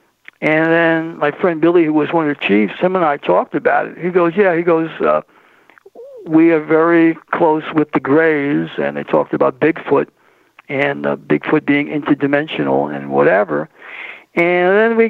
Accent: American